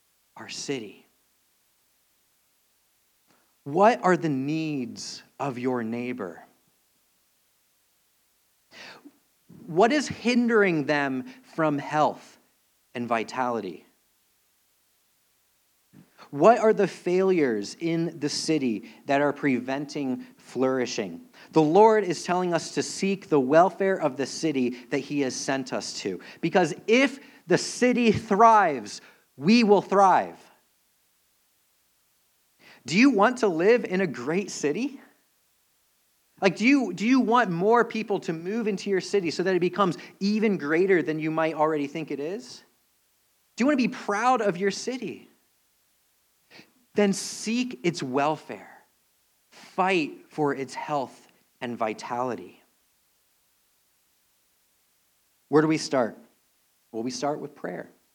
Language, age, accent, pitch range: English, 40-59, American, 145-220 Hz